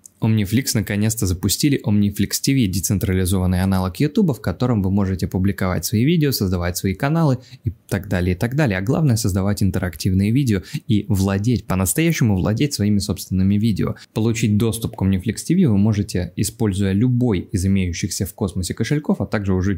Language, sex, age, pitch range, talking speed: Russian, male, 20-39, 95-115 Hz, 160 wpm